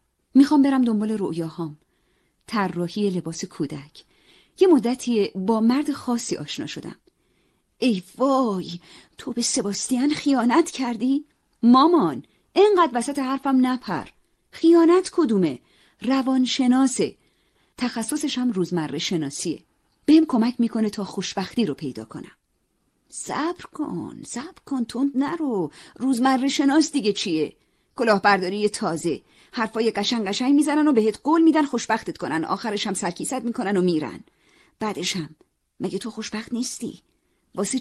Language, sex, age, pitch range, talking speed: Persian, female, 40-59, 185-270 Hz, 120 wpm